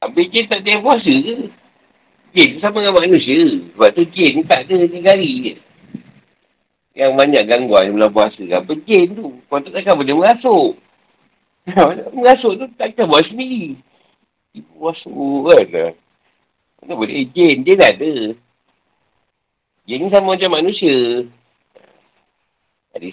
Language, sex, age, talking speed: Malay, male, 60-79, 120 wpm